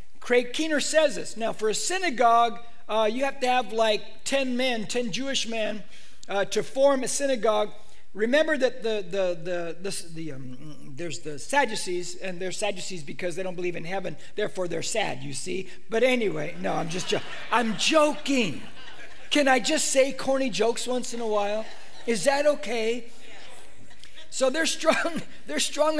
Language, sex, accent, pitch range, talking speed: English, male, American, 205-285 Hz, 175 wpm